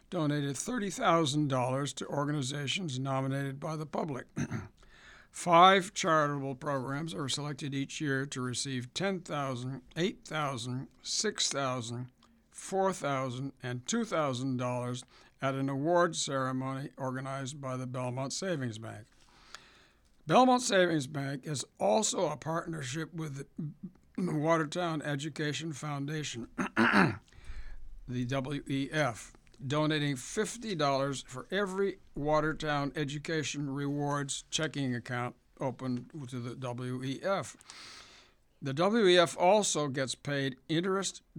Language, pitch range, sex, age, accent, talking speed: English, 130-160 Hz, male, 60-79, American, 95 wpm